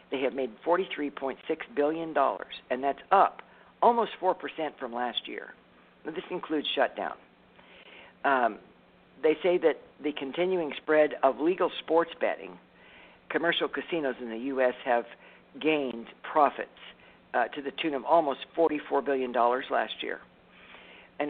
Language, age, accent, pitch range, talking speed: English, 60-79, American, 120-155 Hz, 130 wpm